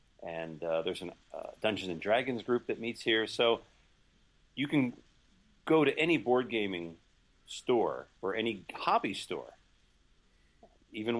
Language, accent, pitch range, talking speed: English, American, 90-115 Hz, 145 wpm